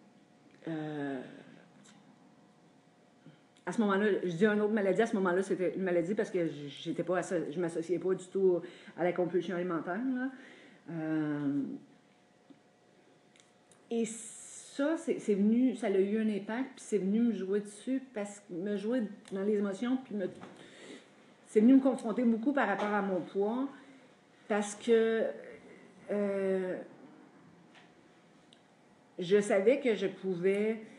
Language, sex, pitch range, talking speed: French, female, 180-230 Hz, 140 wpm